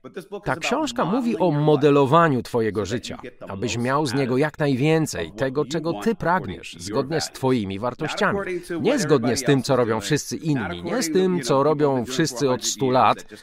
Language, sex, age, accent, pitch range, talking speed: Polish, male, 40-59, native, 115-150 Hz, 170 wpm